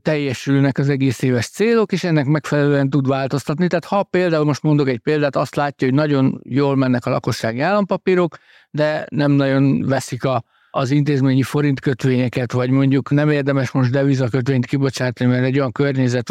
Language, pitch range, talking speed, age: Hungarian, 130-155 Hz, 175 wpm, 60-79